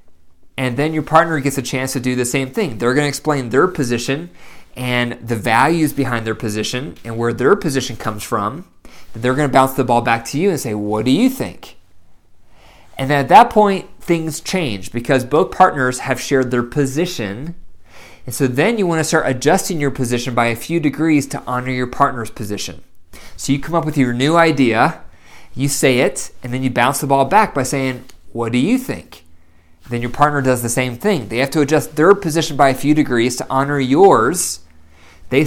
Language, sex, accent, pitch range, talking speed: English, male, American, 115-150 Hz, 210 wpm